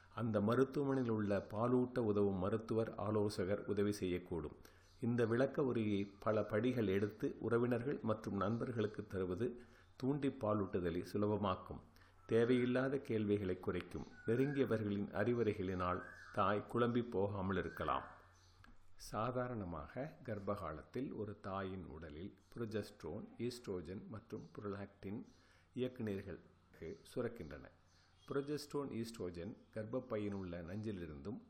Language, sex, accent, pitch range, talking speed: Tamil, male, native, 95-120 Hz, 90 wpm